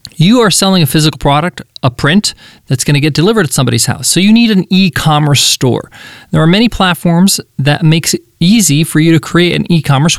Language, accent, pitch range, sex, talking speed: English, American, 130-175 Hz, male, 205 wpm